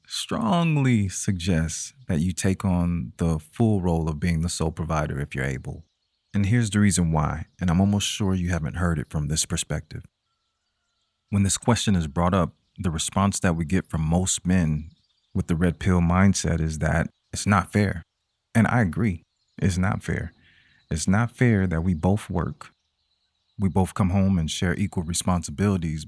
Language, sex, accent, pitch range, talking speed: English, male, American, 80-100 Hz, 180 wpm